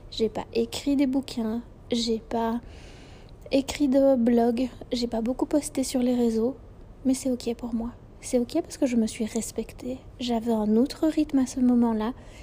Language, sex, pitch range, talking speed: French, female, 220-255 Hz, 180 wpm